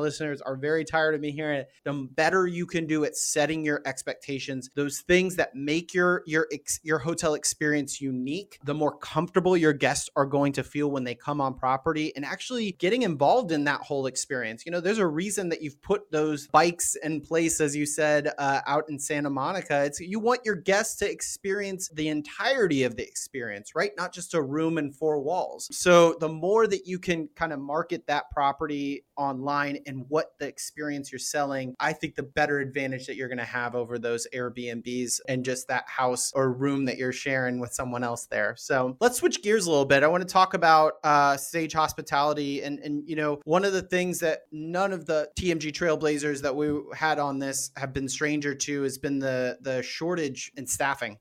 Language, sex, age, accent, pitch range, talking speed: English, male, 30-49, American, 140-165 Hz, 210 wpm